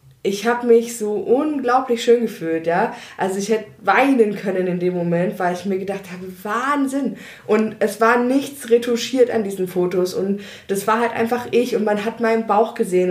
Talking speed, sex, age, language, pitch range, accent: 190 wpm, female, 20-39, German, 195-235 Hz, German